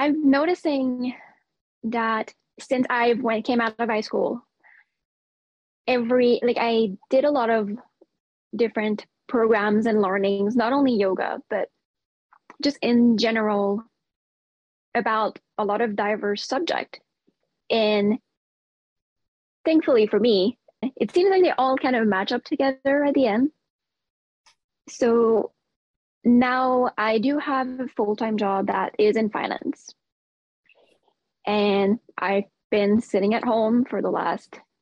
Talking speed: 130 wpm